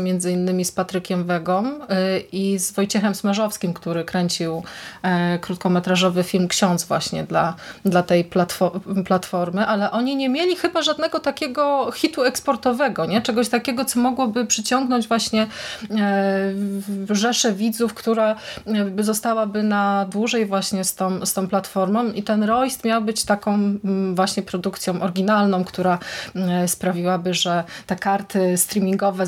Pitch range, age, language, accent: 185-220 Hz, 20-39, Polish, native